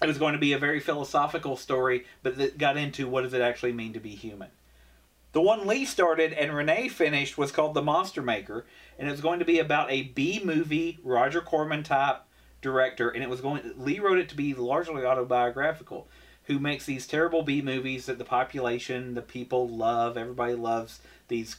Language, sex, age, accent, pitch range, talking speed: English, male, 40-59, American, 115-155 Hz, 195 wpm